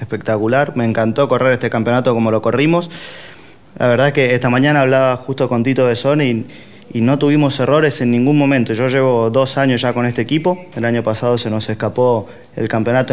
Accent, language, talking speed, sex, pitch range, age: Argentinian, Spanish, 200 wpm, male, 115-140 Hz, 20-39